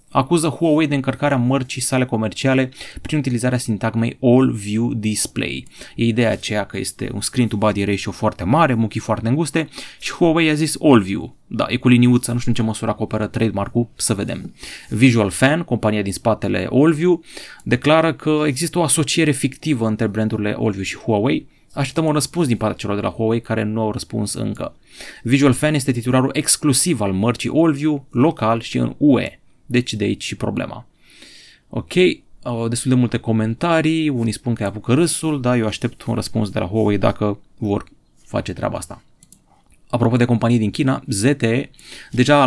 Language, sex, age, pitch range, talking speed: Romanian, male, 30-49, 110-145 Hz, 175 wpm